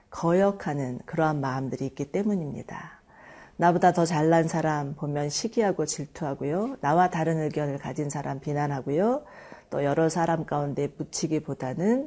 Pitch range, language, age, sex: 145-185 Hz, Korean, 40-59, female